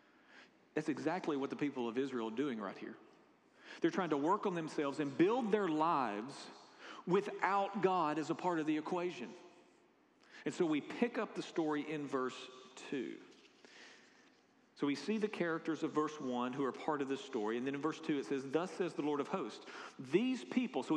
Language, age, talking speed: English, 40-59, 195 wpm